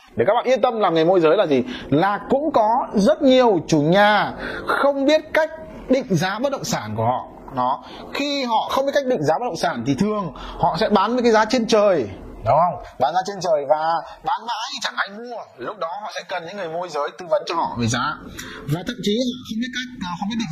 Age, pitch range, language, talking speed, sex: 20-39, 165-255 Hz, Vietnamese, 245 wpm, male